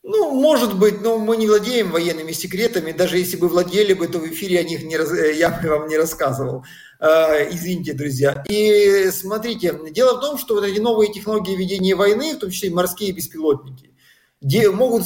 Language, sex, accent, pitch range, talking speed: Russian, male, native, 180-220 Hz, 170 wpm